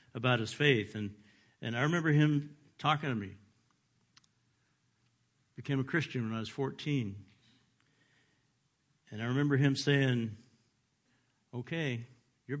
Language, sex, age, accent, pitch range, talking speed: English, male, 60-79, American, 115-145 Hz, 120 wpm